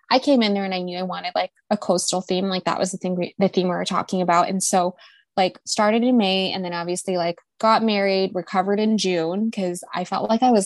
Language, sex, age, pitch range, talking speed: English, female, 20-39, 175-215 Hz, 260 wpm